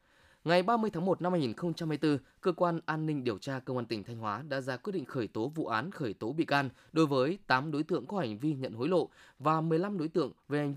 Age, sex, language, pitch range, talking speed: 20-39, male, Vietnamese, 130-175 Hz, 255 wpm